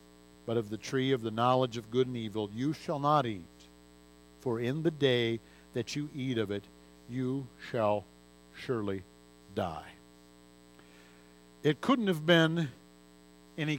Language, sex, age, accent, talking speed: English, male, 60-79, American, 145 wpm